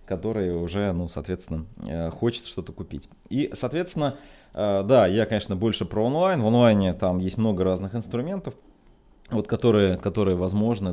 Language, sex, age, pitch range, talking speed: Russian, male, 20-39, 95-125 Hz, 145 wpm